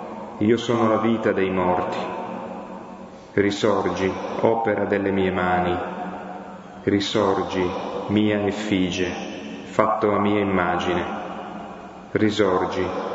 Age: 30-49